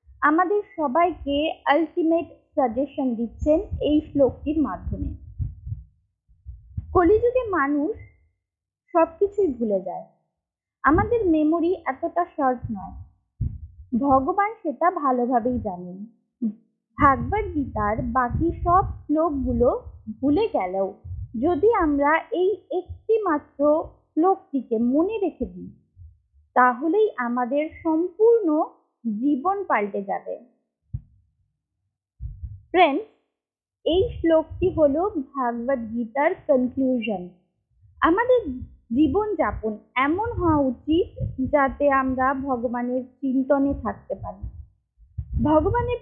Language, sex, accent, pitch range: Bengali, female, native, 230-335 Hz